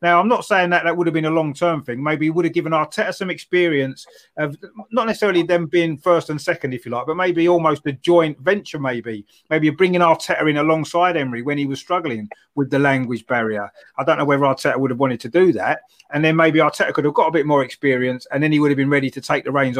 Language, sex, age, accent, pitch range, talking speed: English, male, 30-49, British, 135-170 Hz, 260 wpm